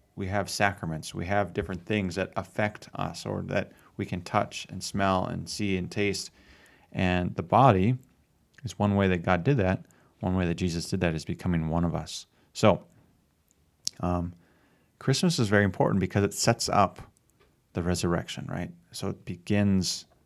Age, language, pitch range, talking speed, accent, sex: 30-49, English, 90-110 Hz, 170 wpm, American, male